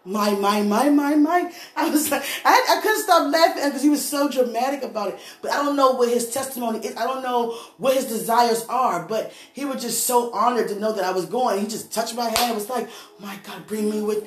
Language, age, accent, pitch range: English, 20-39, American, 230-330 Hz